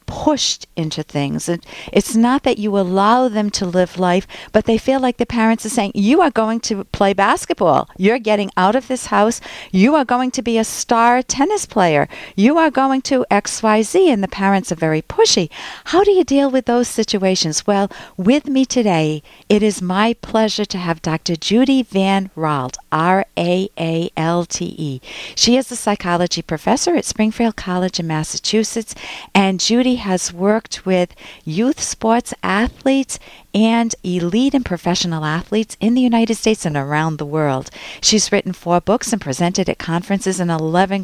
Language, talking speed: English, 170 wpm